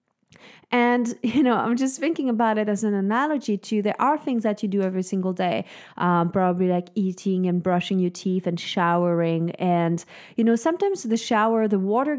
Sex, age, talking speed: female, 20-39, 190 wpm